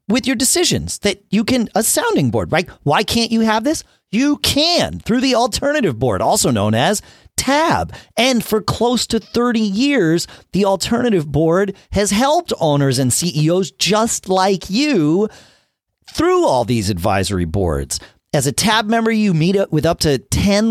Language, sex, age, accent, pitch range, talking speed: English, male, 40-59, American, 135-215 Hz, 170 wpm